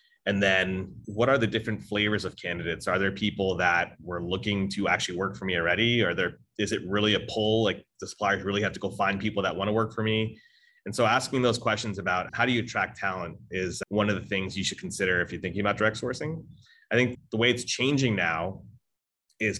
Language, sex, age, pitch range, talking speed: English, male, 30-49, 95-110 Hz, 235 wpm